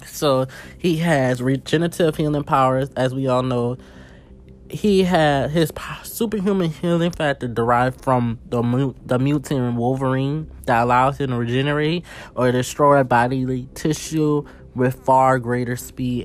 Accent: American